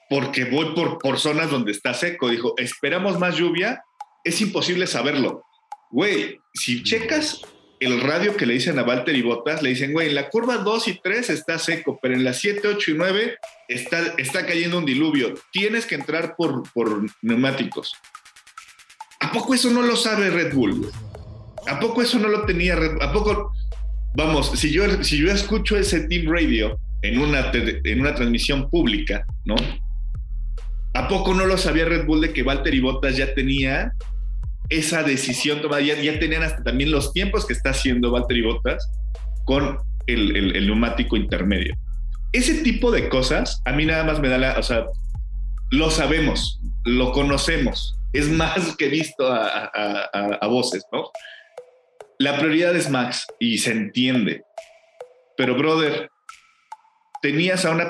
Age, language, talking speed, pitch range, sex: 40-59, Spanish, 170 wpm, 130-210 Hz, male